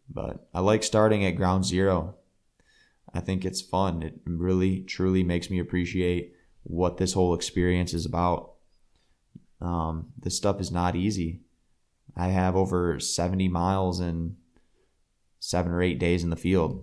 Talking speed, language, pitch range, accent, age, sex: 150 wpm, English, 85-95 Hz, American, 20-39, male